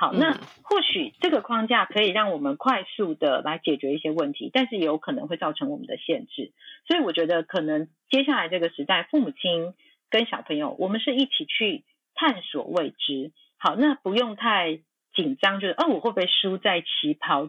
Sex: female